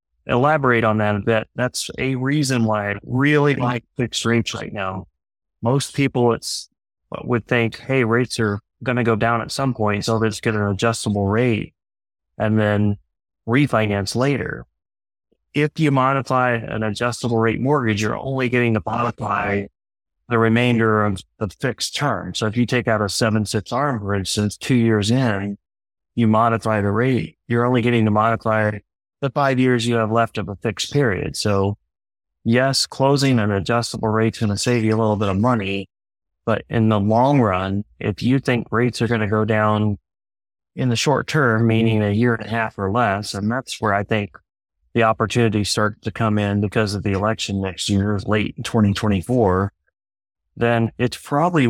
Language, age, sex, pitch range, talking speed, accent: English, 30-49, male, 105-120 Hz, 180 wpm, American